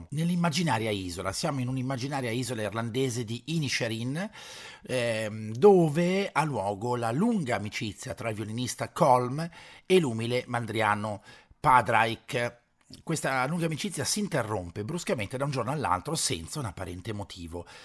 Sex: male